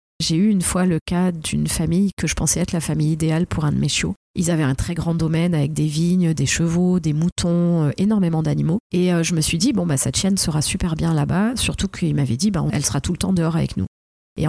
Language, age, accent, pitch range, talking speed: French, 40-59, French, 155-190 Hz, 265 wpm